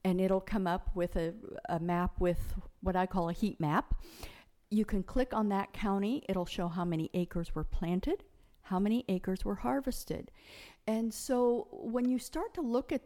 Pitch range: 180-245 Hz